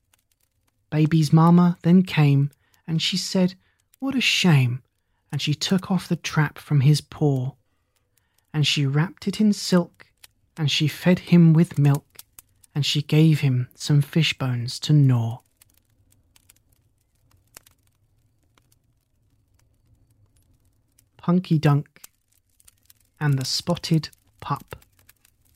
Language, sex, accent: English, male, British